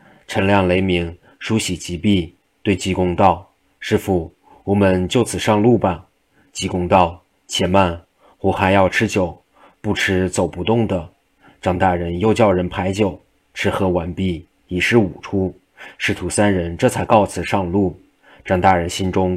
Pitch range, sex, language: 90-105 Hz, male, Chinese